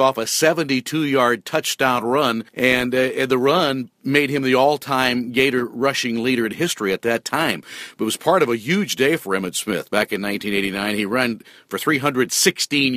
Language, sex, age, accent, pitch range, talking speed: English, male, 50-69, American, 115-135 Hz, 185 wpm